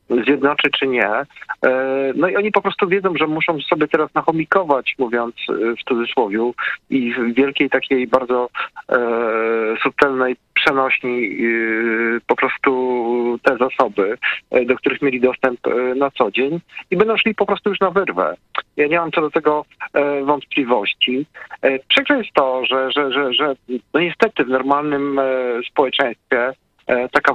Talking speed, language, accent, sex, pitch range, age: 150 wpm, Polish, native, male, 120-145 Hz, 40-59